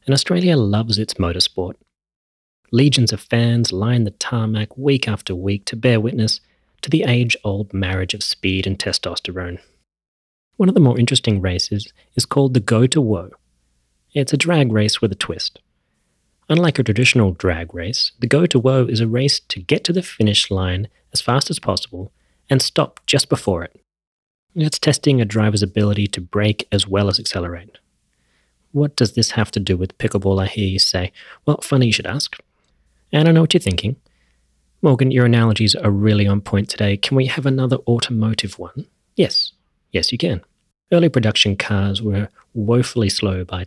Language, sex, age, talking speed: English, male, 30-49, 180 wpm